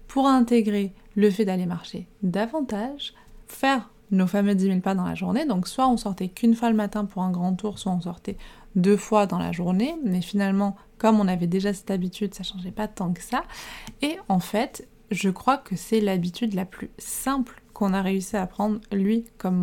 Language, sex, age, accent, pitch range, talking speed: French, female, 20-39, French, 185-225 Hz, 210 wpm